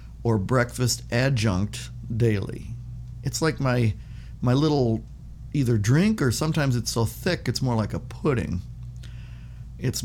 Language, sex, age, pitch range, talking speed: English, male, 50-69, 115-130 Hz, 130 wpm